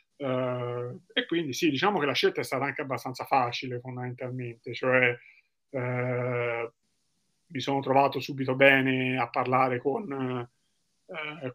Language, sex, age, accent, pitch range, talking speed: Italian, male, 30-49, native, 130-150 Hz, 130 wpm